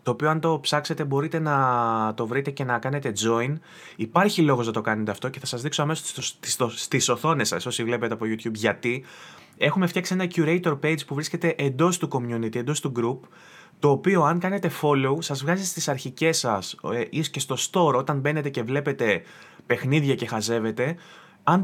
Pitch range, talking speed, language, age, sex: 125-165 Hz, 190 wpm, Greek, 20-39, male